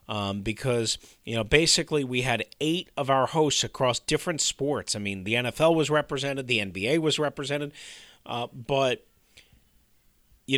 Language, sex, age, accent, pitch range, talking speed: English, male, 40-59, American, 115-160 Hz, 155 wpm